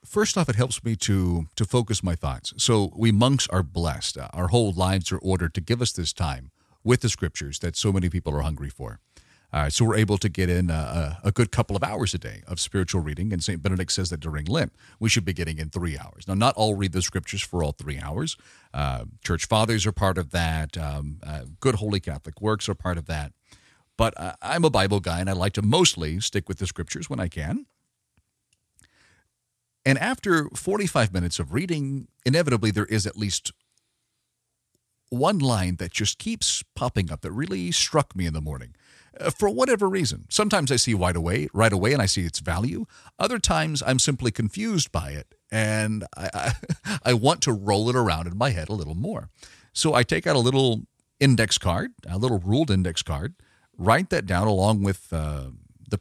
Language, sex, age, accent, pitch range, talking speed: English, male, 40-59, American, 85-120 Hz, 210 wpm